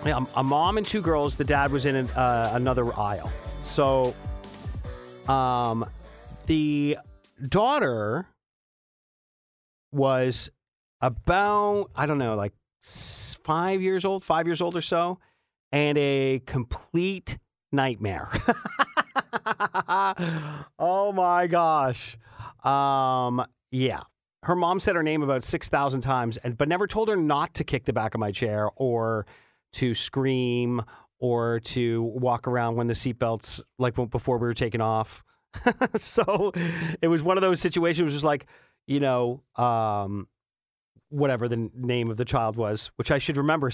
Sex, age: male, 40-59